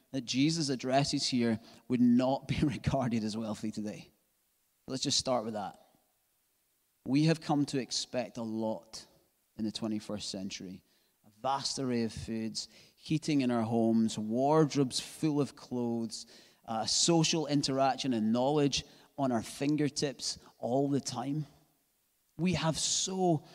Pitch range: 115-145 Hz